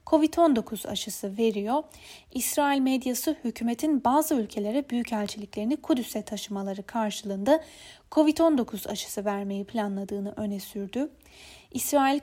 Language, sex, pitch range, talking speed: Turkish, female, 210-275 Hz, 95 wpm